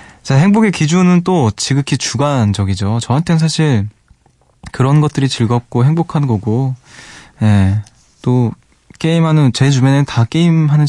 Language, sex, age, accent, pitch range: Korean, male, 20-39, native, 110-155 Hz